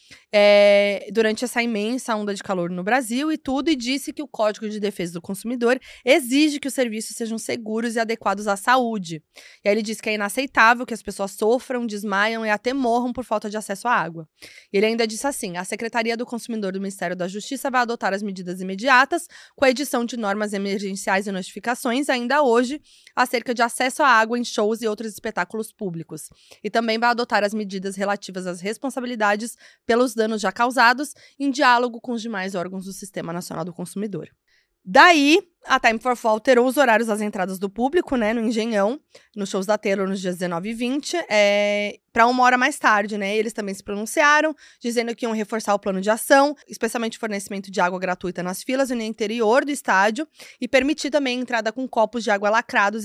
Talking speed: 200 wpm